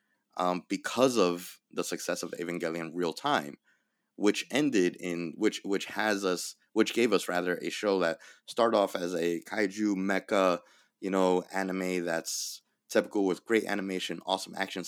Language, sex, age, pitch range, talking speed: English, male, 30-49, 85-95 Hz, 155 wpm